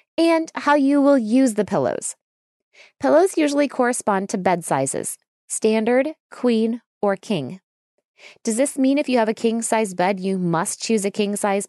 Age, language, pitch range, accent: 20-39, English, 195-275 Hz, American